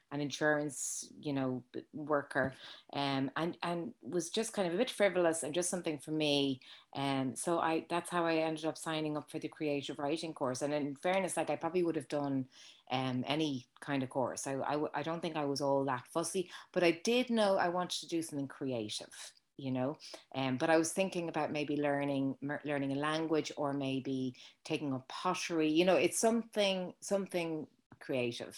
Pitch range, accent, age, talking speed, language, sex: 135-160 Hz, Irish, 30-49, 205 wpm, English, female